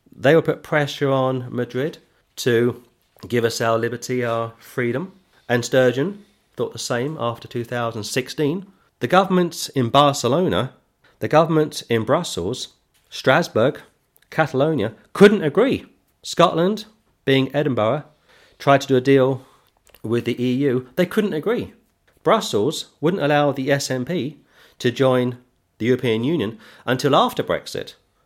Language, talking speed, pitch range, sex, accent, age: English, 125 wpm, 120-155 Hz, male, British, 40-59